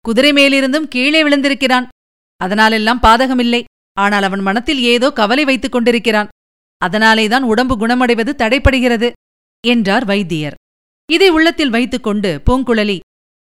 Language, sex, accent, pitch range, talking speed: Tamil, female, native, 240-300 Hz, 105 wpm